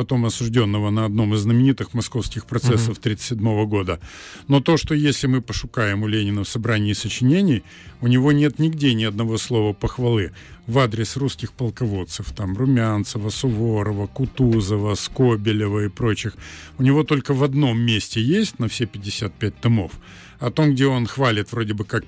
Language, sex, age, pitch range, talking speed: Russian, male, 50-69, 105-135 Hz, 160 wpm